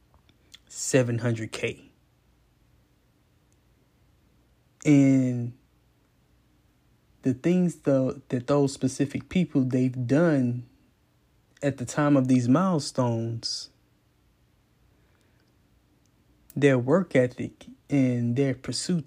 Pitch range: 120-140 Hz